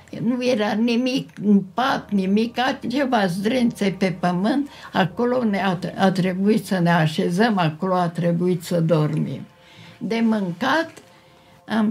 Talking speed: 120 wpm